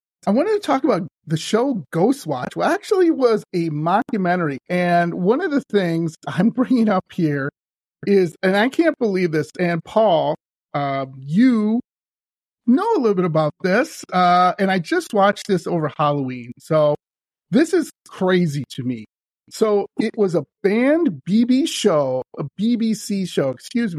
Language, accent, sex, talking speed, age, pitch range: English, American, male, 160 wpm, 40-59, 160-225 Hz